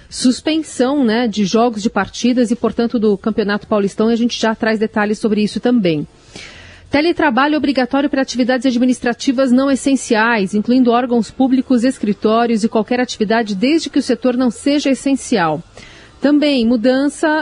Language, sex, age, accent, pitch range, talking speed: Portuguese, female, 40-59, Brazilian, 220-265 Hz, 150 wpm